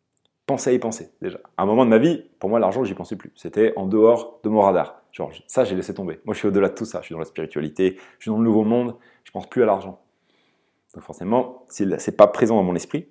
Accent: French